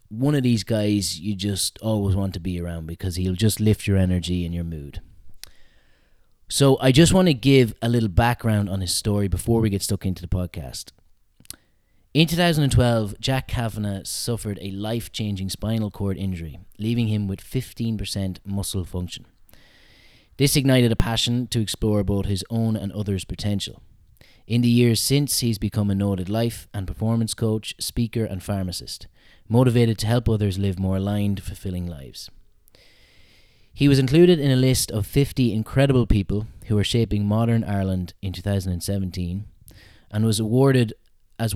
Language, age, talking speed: English, 30-49, 160 wpm